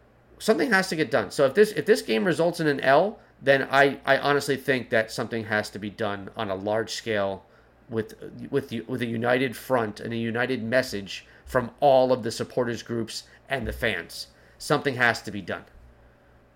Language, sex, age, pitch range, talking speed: English, male, 30-49, 110-160 Hz, 200 wpm